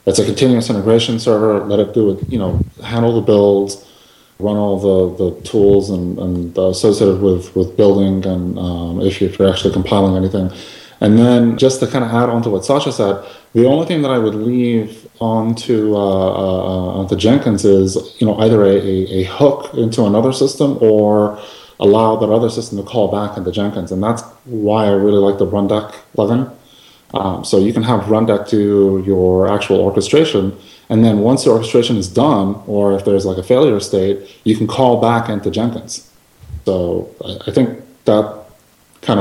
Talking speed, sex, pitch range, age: 185 wpm, male, 95-115 Hz, 20-39